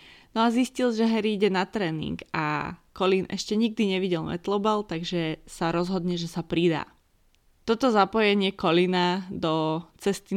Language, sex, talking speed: Slovak, female, 145 wpm